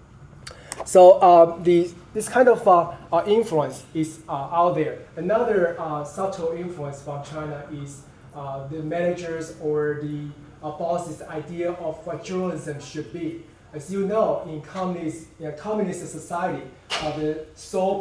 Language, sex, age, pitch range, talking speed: English, male, 20-39, 145-170 Hz, 145 wpm